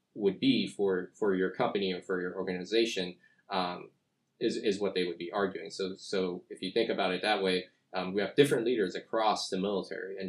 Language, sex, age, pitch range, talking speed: English, male, 20-39, 90-105 Hz, 210 wpm